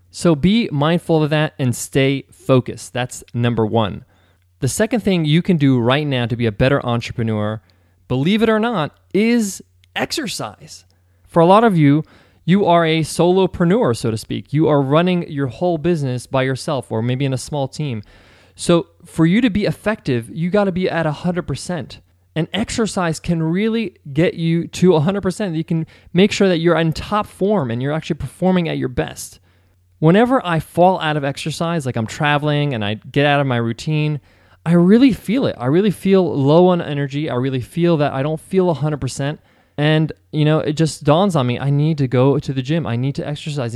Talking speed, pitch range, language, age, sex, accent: 195 wpm, 125-170 Hz, English, 20-39, male, American